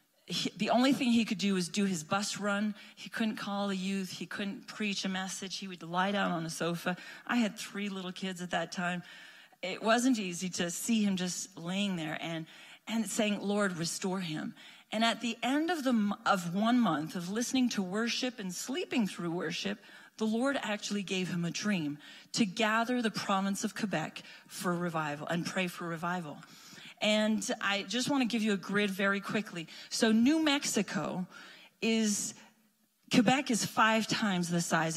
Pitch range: 185-240 Hz